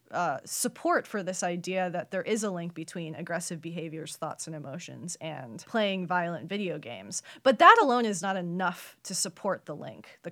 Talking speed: 185 wpm